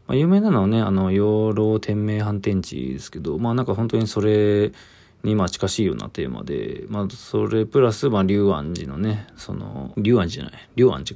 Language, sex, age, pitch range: Japanese, male, 20-39, 95-120 Hz